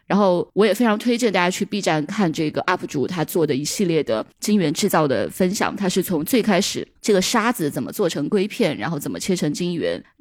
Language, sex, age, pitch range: Chinese, female, 20-39, 160-215 Hz